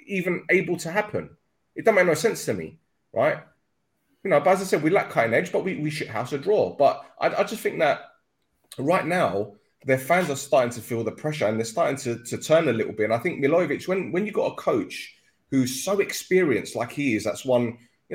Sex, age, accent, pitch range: male, 20-39, British, 115-155 Hz